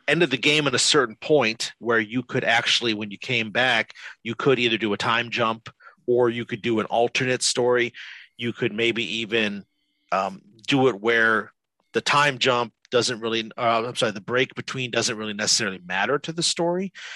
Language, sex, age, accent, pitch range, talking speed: English, male, 40-59, American, 115-130 Hz, 195 wpm